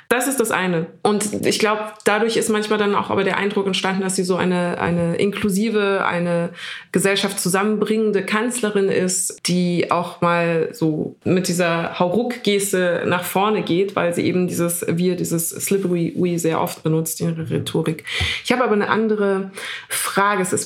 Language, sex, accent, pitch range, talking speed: German, female, German, 175-210 Hz, 170 wpm